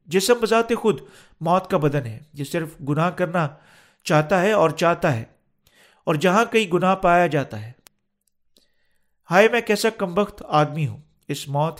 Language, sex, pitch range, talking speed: Urdu, male, 150-200 Hz, 160 wpm